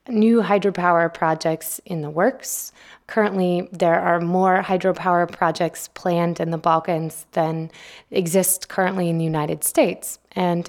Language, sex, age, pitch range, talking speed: English, female, 20-39, 160-190 Hz, 135 wpm